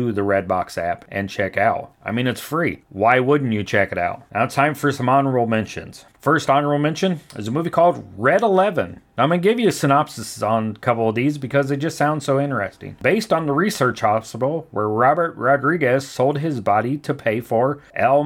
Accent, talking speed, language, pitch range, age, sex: American, 215 wpm, English, 110-145 Hz, 40-59, male